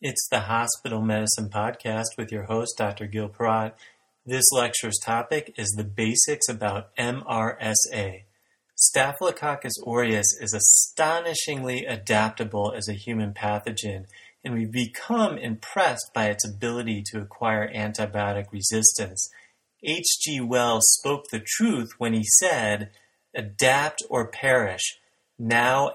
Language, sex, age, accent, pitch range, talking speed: English, male, 30-49, American, 105-125 Hz, 120 wpm